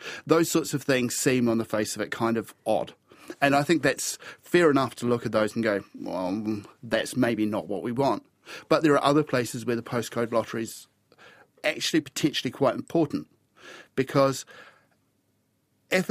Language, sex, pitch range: English, male, 115-135 Hz